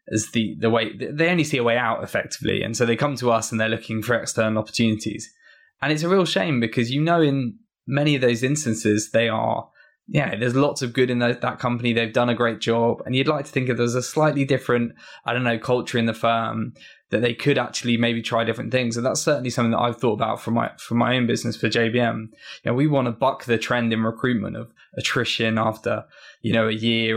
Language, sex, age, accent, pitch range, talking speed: English, male, 10-29, British, 115-130 Hz, 245 wpm